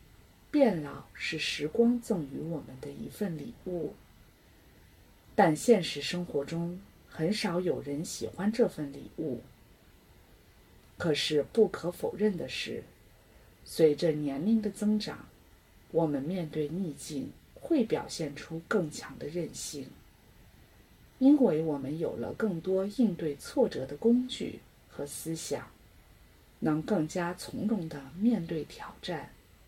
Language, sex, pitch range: English, female, 145-215 Hz